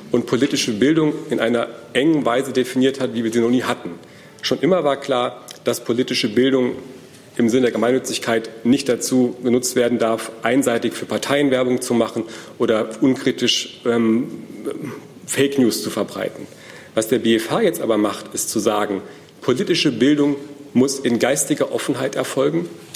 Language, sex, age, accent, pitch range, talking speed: German, male, 40-59, German, 120-135 Hz, 155 wpm